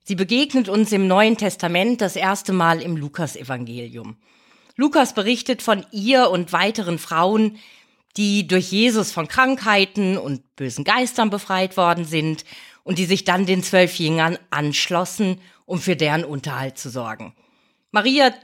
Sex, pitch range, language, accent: female, 165-215 Hz, German, German